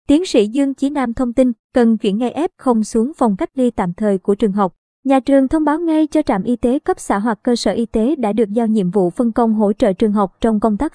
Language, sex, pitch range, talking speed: Vietnamese, male, 210-260 Hz, 275 wpm